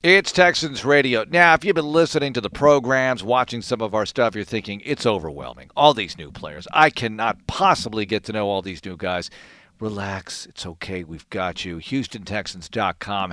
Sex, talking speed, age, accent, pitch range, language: male, 185 wpm, 50-69, American, 110-145 Hz, English